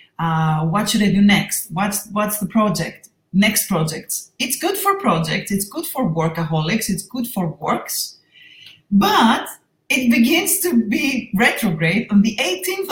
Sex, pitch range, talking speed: female, 175-245 Hz, 155 wpm